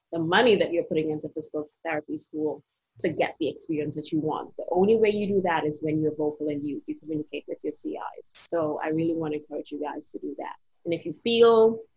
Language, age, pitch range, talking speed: English, 30-49, 155-185 Hz, 235 wpm